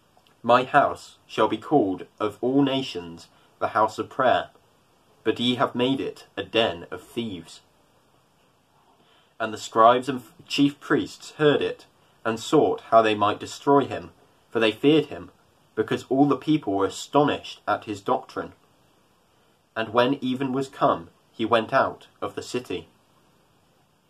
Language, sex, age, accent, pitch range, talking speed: English, male, 20-39, British, 110-140 Hz, 150 wpm